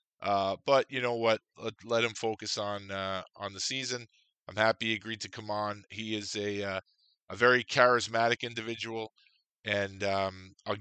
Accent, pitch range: American, 100-125 Hz